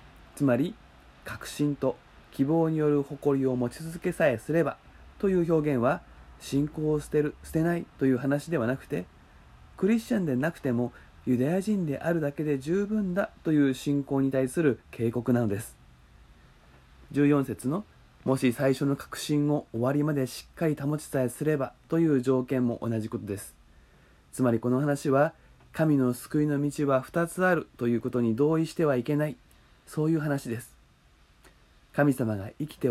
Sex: male